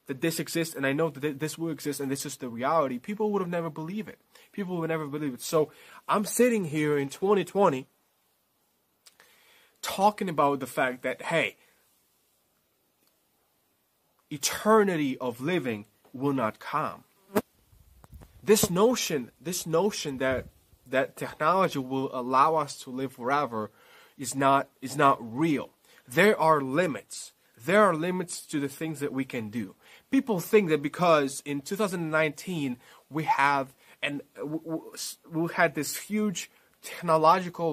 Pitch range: 135-170 Hz